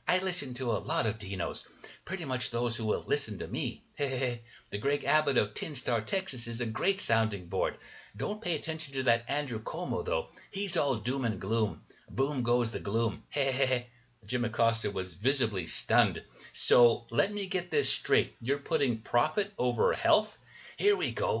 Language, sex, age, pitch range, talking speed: English, male, 60-79, 120-190 Hz, 175 wpm